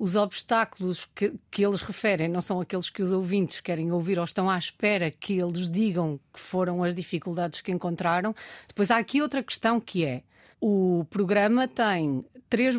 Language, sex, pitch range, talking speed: Portuguese, female, 175-230 Hz, 180 wpm